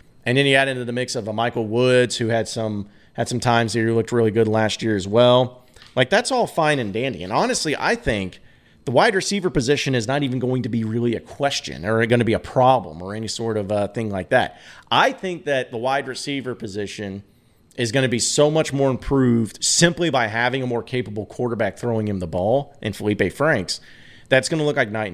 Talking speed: 230 wpm